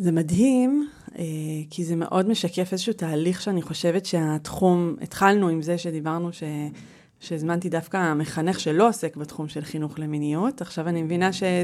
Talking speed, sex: 145 wpm, female